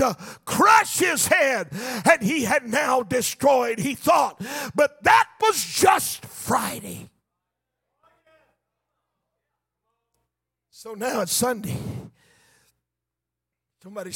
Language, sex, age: English, male, 50-69